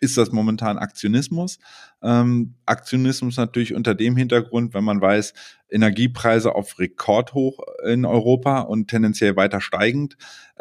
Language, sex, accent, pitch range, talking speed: German, male, German, 105-125 Hz, 130 wpm